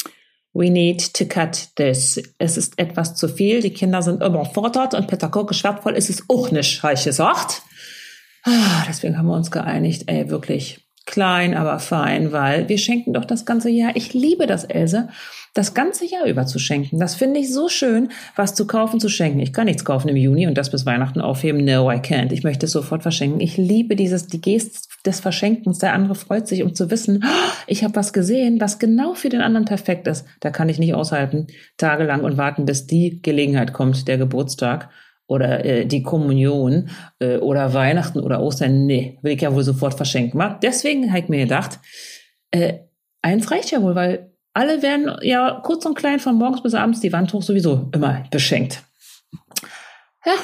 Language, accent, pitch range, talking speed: German, German, 145-220 Hz, 195 wpm